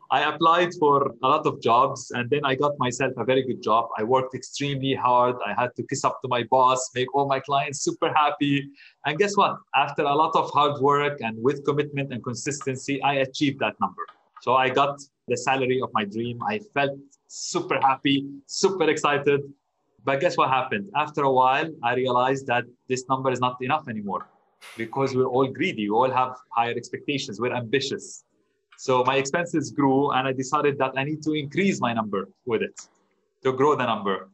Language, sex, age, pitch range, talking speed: English, male, 20-39, 130-150 Hz, 195 wpm